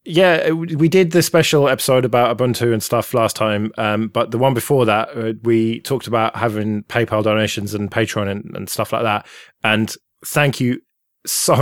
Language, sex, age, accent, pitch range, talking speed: English, male, 20-39, British, 105-115 Hz, 180 wpm